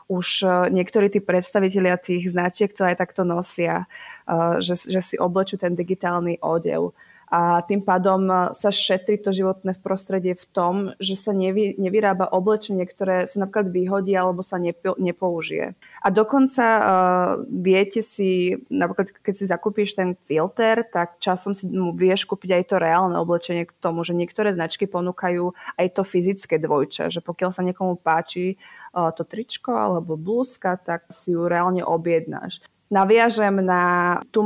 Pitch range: 175-200 Hz